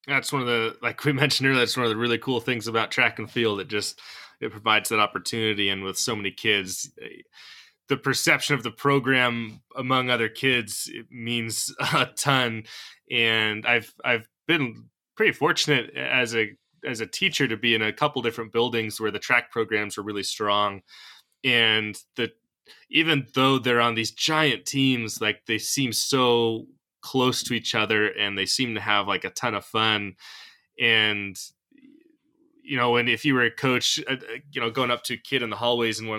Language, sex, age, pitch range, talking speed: English, male, 20-39, 110-130 Hz, 190 wpm